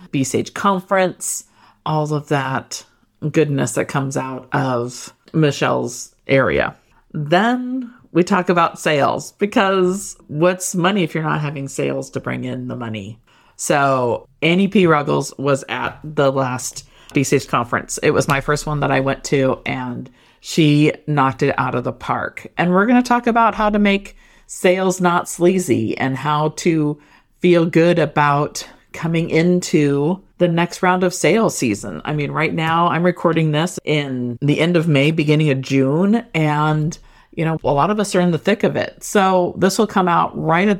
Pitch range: 135-180 Hz